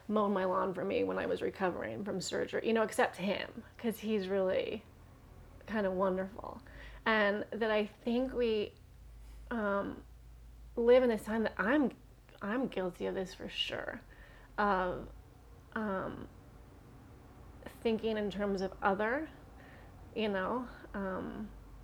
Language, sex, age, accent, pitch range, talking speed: English, female, 30-49, American, 190-235 Hz, 135 wpm